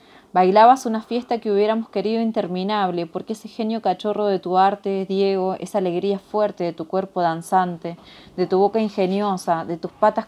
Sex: female